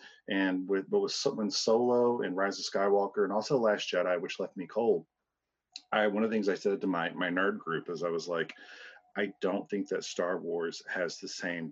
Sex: male